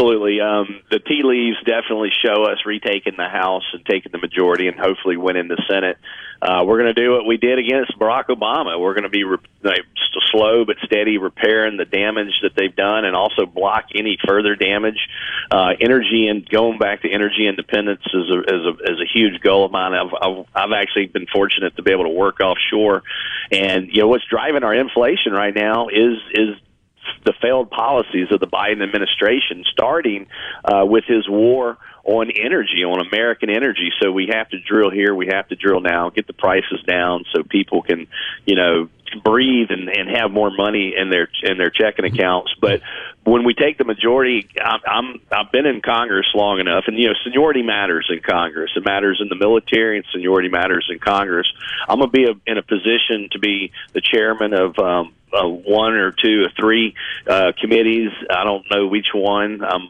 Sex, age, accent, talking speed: male, 40-59, American, 190 wpm